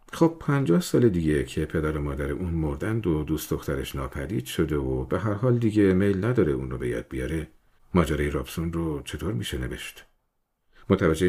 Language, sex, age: Persian, male, 50-69